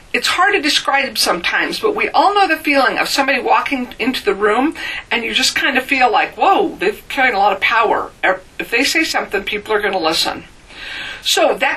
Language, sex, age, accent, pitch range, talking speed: English, female, 50-69, American, 260-390 Hz, 215 wpm